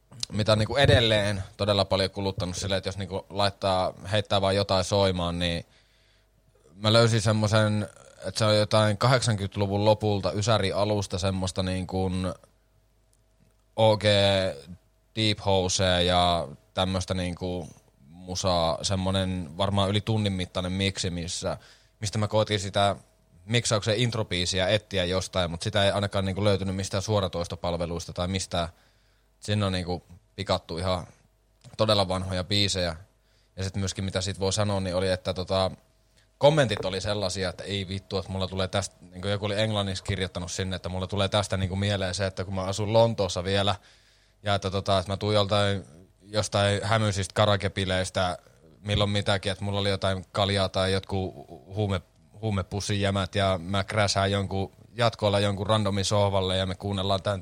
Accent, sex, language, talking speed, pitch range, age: native, male, Finnish, 140 wpm, 95-105 Hz, 20-39